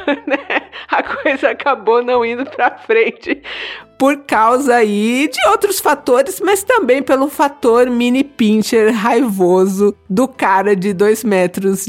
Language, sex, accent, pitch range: Portuguese, female, Brazilian, 220-290 Hz